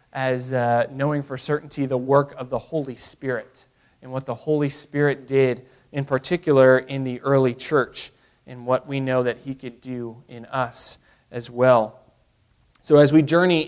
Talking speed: 170 wpm